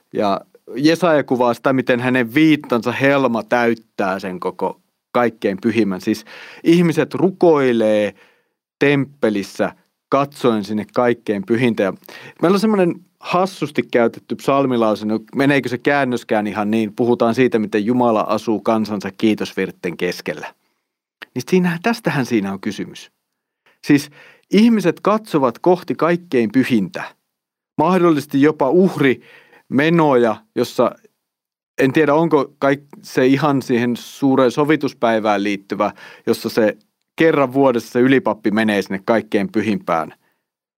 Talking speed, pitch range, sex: 115 wpm, 110-160 Hz, male